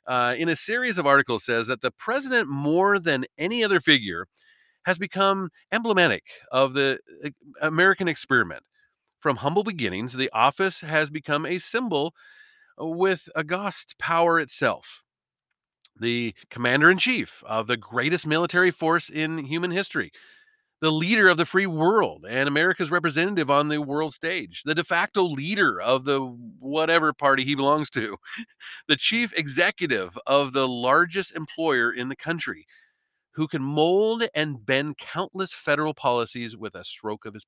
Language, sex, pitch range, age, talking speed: English, male, 135-190 Hz, 40-59, 150 wpm